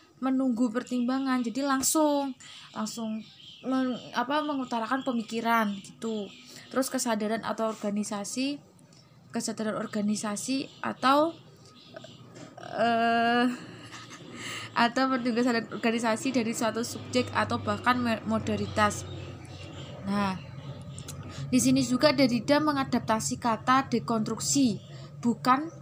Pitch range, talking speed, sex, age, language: 220-265 Hz, 85 wpm, female, 20-39, Indonesian